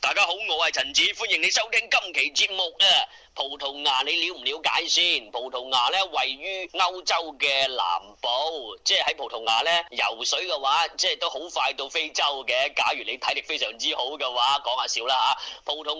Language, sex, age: Chinese, male, 30-49